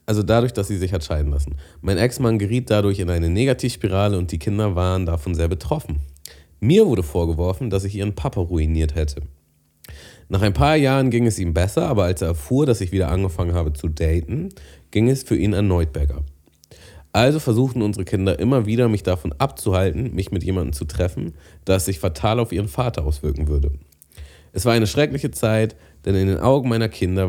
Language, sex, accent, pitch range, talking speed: German, male, German, 80-110 Hz, 195 wpm